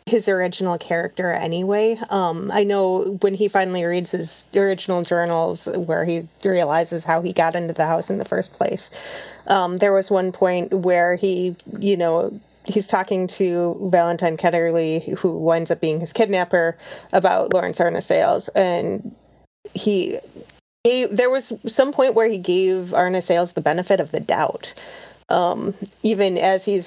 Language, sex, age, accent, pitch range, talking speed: English, female, 30-49, American, 170-210 Hz, 160 wpm